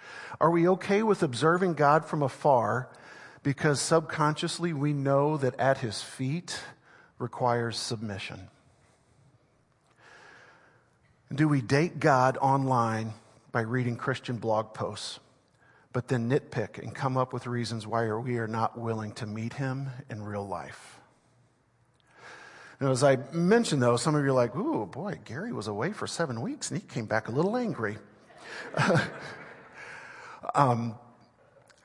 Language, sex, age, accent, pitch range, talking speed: English, male, 50-69, American, 115-145 Hz, 135 wpm